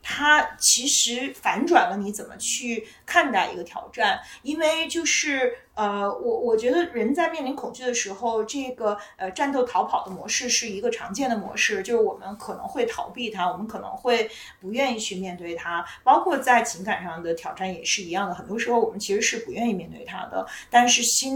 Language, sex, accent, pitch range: Chinese, female, native, 190-250 Hz